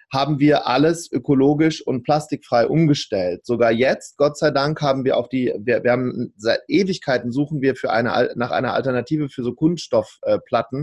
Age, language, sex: 30-49, German, male